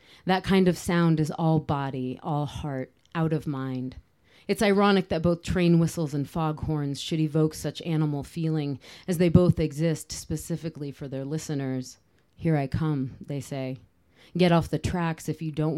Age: 30-49